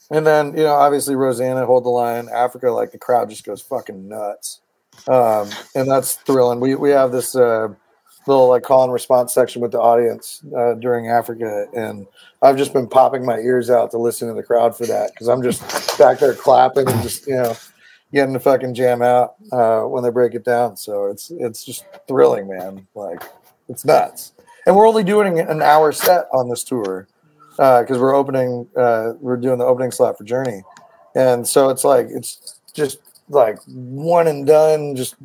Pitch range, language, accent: 115-135 Hz, English, American